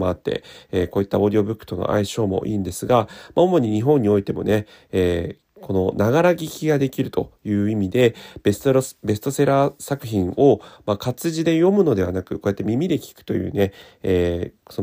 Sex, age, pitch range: male, 30-49, 95-140 Hz